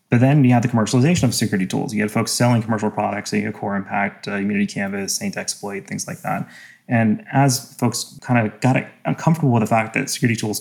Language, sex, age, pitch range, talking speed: English, male, 30-49, 105-125 Hz, 215 wpm